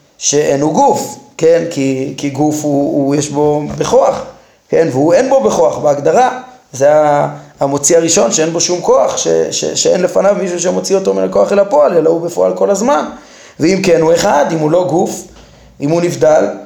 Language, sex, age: Hebrew, male, 20-39